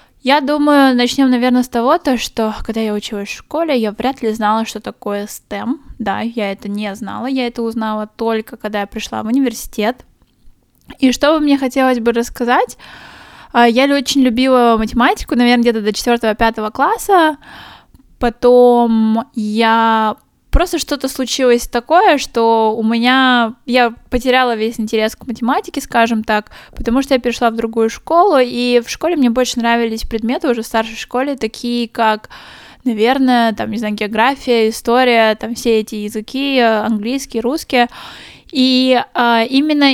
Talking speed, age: 150 wpm, 10-29